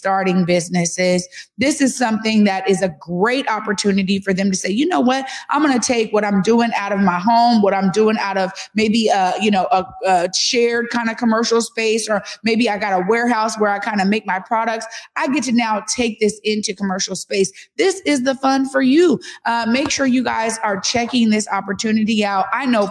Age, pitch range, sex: 30-49, 185-230 Hz, female